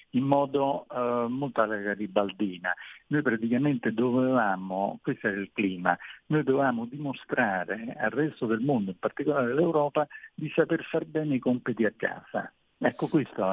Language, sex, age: Italian, male, 60-79